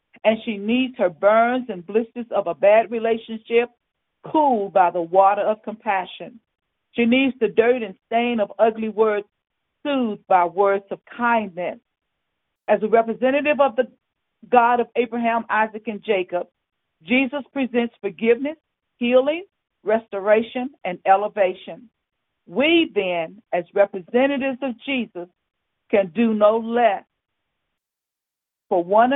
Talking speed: 125 wpm